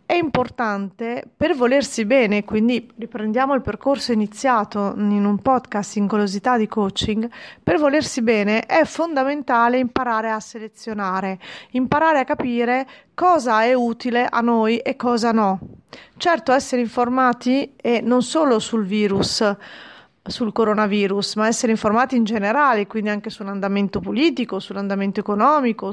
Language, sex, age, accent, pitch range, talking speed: Italian, female, 30-49, native, 210-260 Hz, 130 wpm